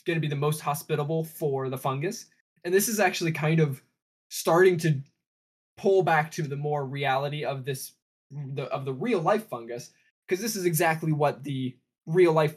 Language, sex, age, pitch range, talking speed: English, male, 20-39, 135-160 Hz, 185 wpm